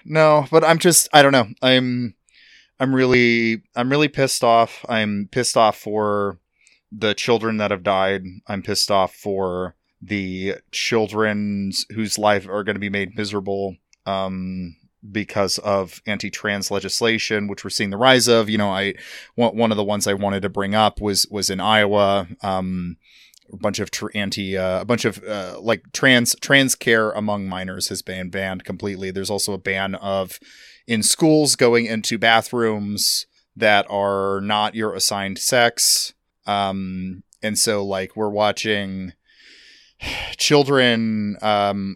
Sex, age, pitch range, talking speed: male, 30-49, 95-115 Hz, 155 wpm